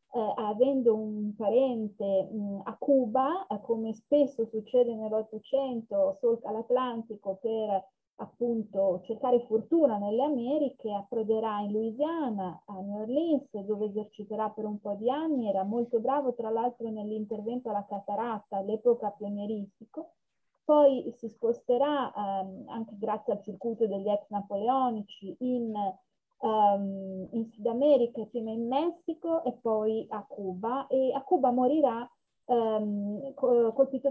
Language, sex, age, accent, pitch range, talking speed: Italian, female, 30-49, native, 205-250 Hz, 125 wpm